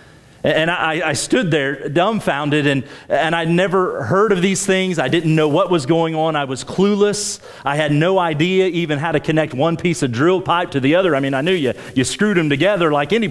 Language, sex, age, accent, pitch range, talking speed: English, male, 40-59, American, 125-170 Hz, 230 wpm